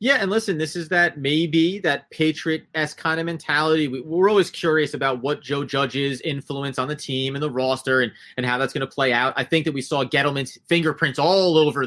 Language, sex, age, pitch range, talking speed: English, male, 30-49, 135-170 Hz, 220 wpm